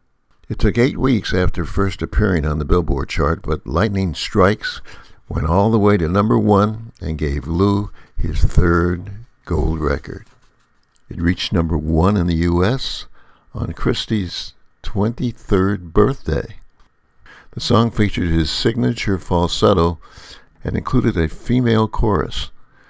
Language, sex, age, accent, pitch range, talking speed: English, male, 60-79, American, 75-100 Hz, 130 wpm